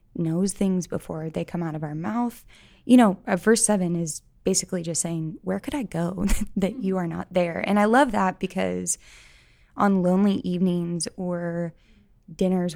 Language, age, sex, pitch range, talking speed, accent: English, 20-39, female, 170-205 Hz, 175 wpm, American